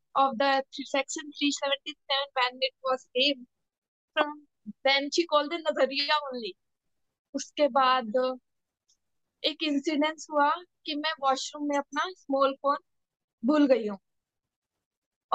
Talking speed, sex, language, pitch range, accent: 115 wpm, female, English, 250-300 Hz, Indian